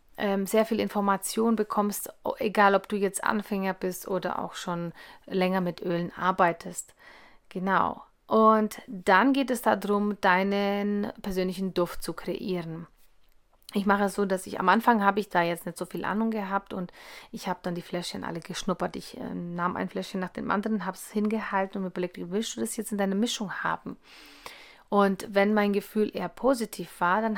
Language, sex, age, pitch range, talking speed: German, female, 30-49, 185-215 Hz, 180 wpm